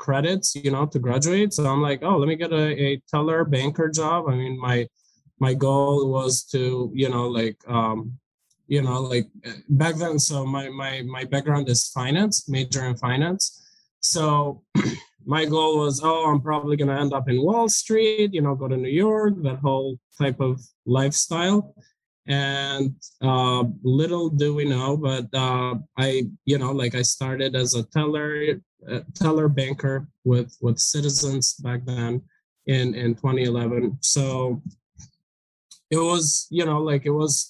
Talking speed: 165 wpm